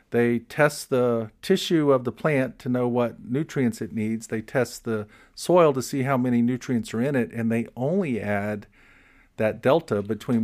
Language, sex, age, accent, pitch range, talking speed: English, male, 50-69, American, 110-135 Hz, 185 wpm